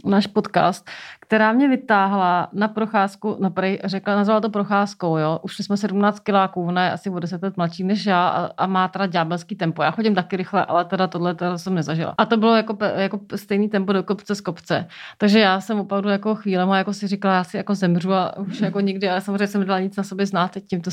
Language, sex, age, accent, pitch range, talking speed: Czech, female, 30-49, native, 180-210 Hz, 225 wpm